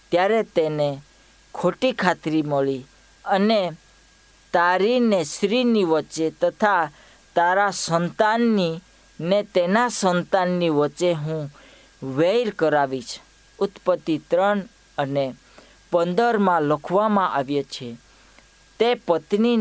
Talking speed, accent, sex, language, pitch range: 70 wpm, native, female, Hindi, 155-205 Hz